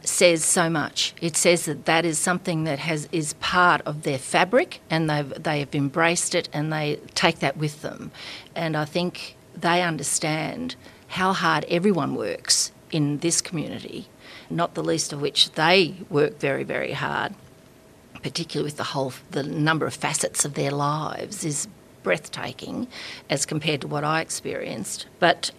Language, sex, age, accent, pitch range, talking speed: English, female, 40-59, Australian, 150-170 Hz, 165 wpm